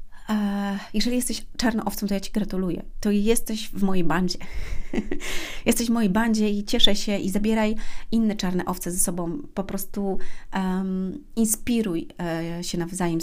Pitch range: 175-210 Hz